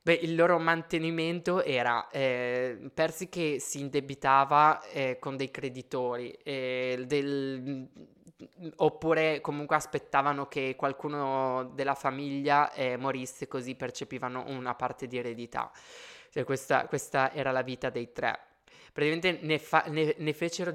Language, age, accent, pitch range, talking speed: Italian, 20-39, native, 130-160 Hz, 115 wpm